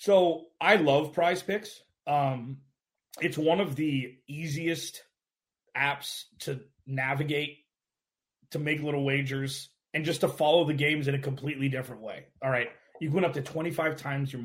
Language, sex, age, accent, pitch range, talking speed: English, male, 30-49, American, 135-160 Hz, 160 wpm